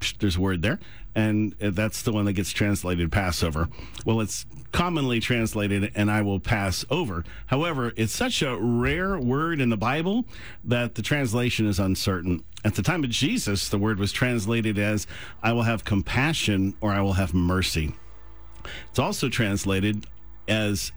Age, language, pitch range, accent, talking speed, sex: 50-69, English, 100-120 Hz, American, 165 wpm, male